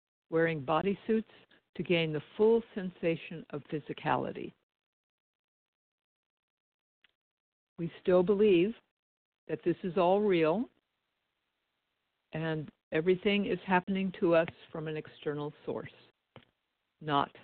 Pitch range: 150-185 Hz